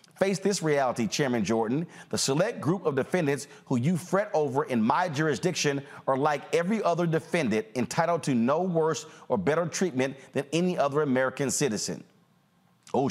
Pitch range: 140-185 Hz